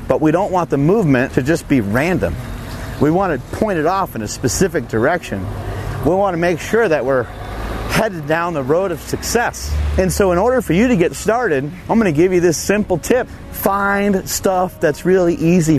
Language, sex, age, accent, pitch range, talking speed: English, male, 30-49, American, 115-170 Hz, 200 wpm